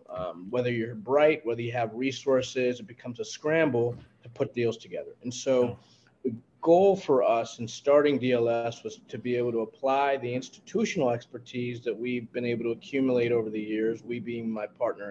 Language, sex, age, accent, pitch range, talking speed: English, male, 30-49, American, 115-135 Hz, 185 wpm